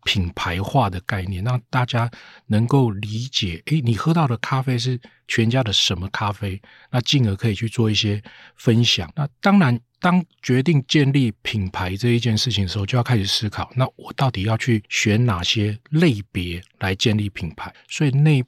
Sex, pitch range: male, 100-130 Hz